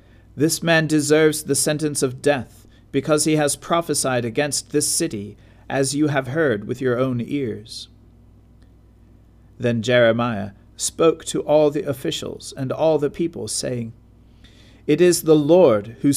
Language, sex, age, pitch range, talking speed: English, male, 40-59, 110-145 Hz, 145 wpm